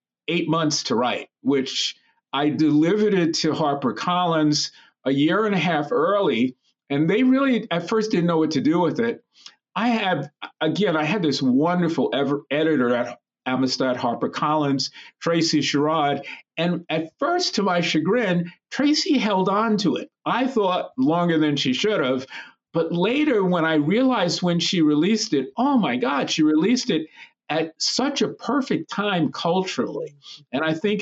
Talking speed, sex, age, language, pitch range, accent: 160 wpm, male, 50-69, English, 140-205 Hz, American